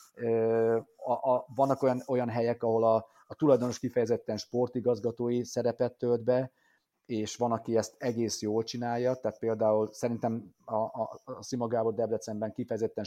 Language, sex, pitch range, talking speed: Hungarian, male, 110-125 Hz, 140 wpm